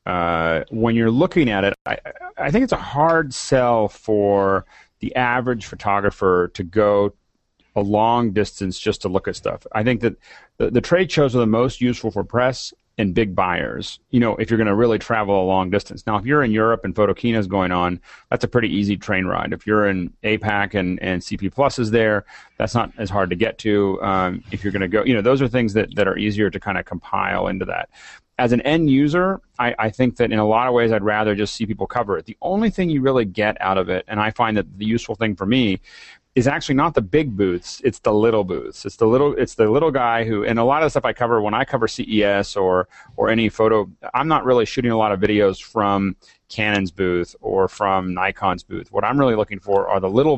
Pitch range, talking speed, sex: 100-120 Hz, 240 wpm, male